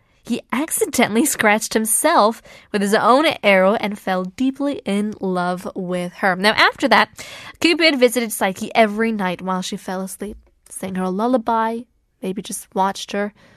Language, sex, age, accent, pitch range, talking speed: English, female, 20-39, American, 195-280 Hz, 155 wpm